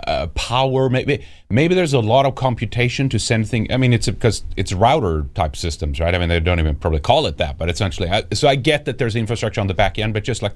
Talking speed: 255 wpm